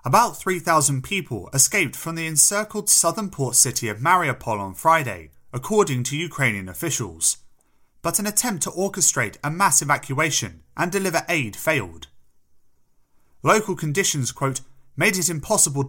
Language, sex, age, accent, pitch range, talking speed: English, male, 30-49, British, 120-175 Hz, 135 wpm